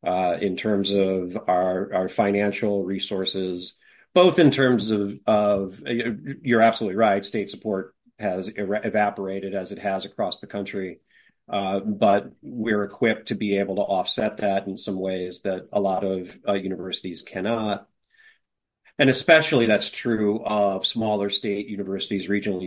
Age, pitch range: 40-59, 95-110 Hz